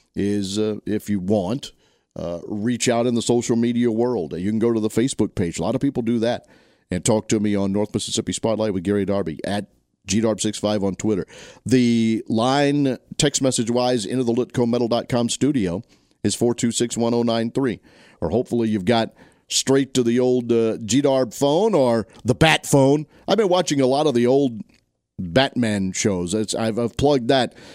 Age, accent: 50-69, American